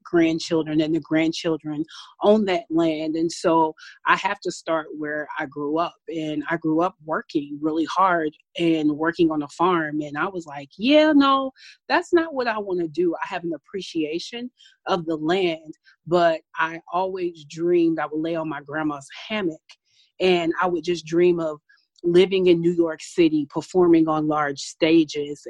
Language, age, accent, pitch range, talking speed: English, 30-49, American, 160-190 Hz, 175 wpm